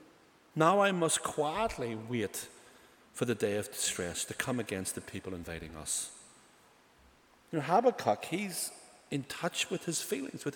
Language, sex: English, male